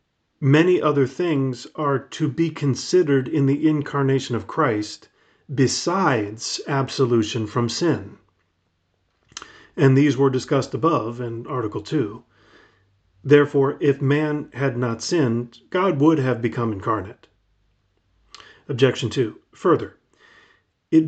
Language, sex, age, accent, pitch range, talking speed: English, male, 40-59, American, 120-150 Hz, 110 wpm